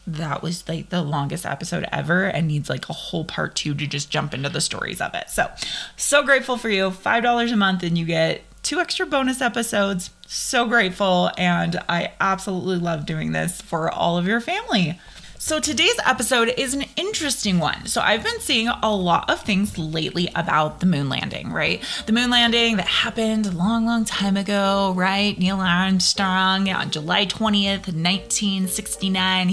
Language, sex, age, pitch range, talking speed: English, female, 20-39, 180-240 Hz, 180 wpm